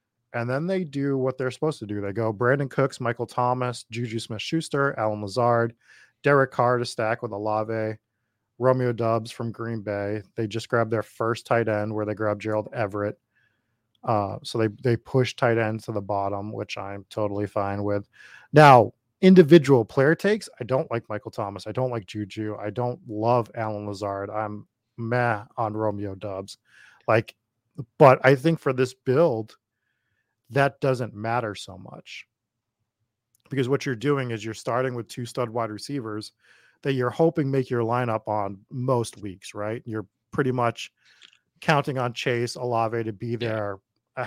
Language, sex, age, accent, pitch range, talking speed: English, male, 20-39, American, 110-130 Hz, 170 wpm